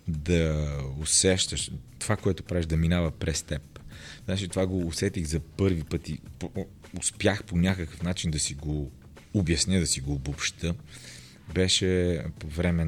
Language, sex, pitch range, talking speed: Bulgarian, male, 75-95 Hz, 145 wpm